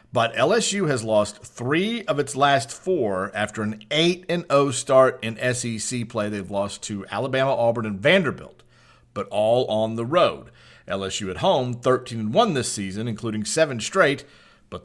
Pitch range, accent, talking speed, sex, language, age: 110-140 Hz, American, 155 wpm, male, English, 40-59